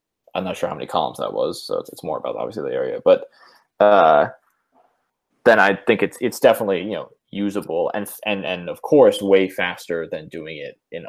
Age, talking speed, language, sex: 20-39, 205 wpm, English, male